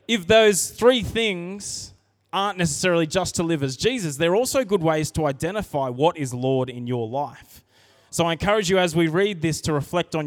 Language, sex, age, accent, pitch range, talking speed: English, male, 20-39, Australian, 125-175 Hz, 200 wpm